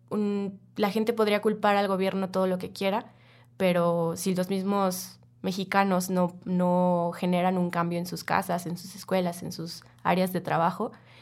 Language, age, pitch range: Spanish, 20-39, 175-200 Hz